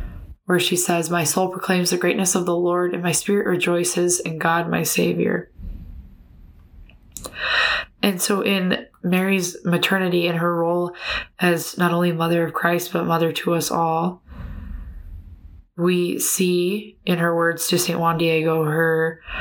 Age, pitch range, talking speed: 20-39, 160-175 Hz, 150 wpm